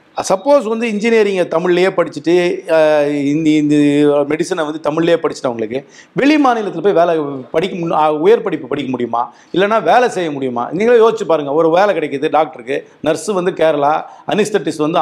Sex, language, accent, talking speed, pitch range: male, Tamil, native, 145 wpm, 160-225 Hz